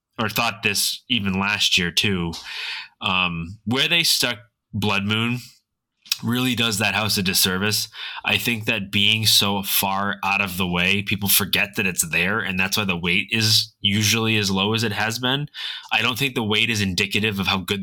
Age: 20-39